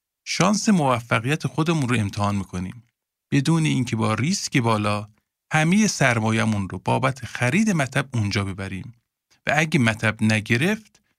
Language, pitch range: Persian, 110-160 Hz